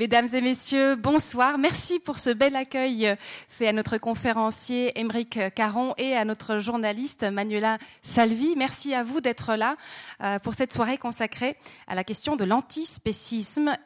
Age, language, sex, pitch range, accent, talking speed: 30-49, French, female, 225-285 Hz, French, 150 wpm